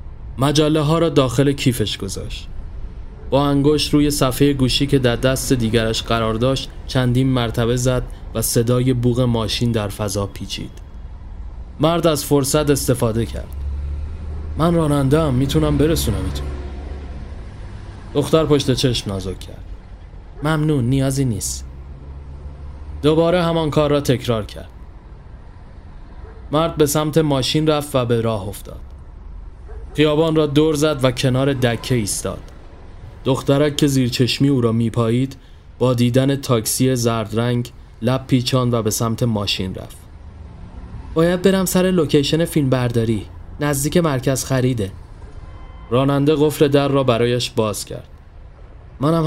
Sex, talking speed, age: male, 125 wpm, 30-49